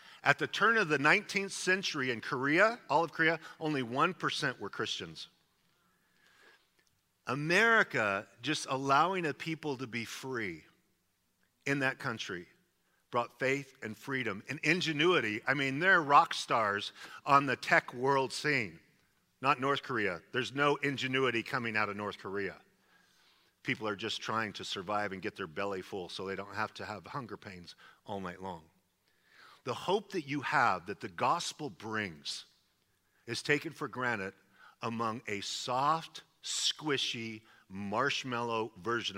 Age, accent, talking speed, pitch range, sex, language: 50-69, American, 145 wpm, 105-140 Hz, male, English